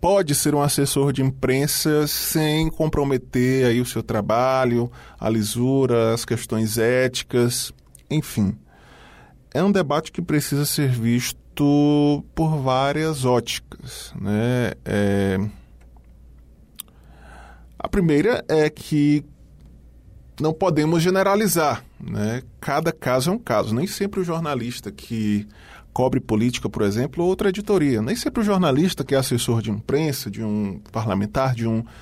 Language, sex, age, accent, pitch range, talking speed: Portuguese, male, 20-39, Brazilian, 115-160 Hz, 120 wpm